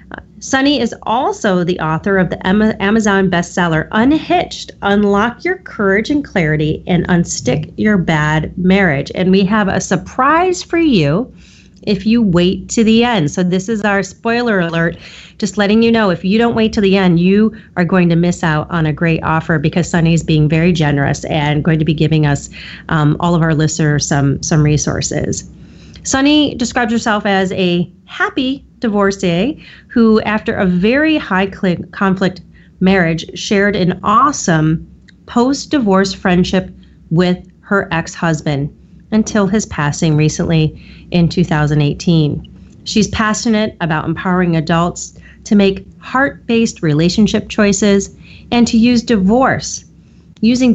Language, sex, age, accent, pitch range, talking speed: English, female, 30-49, American, 165-220 Hz, 145 wpm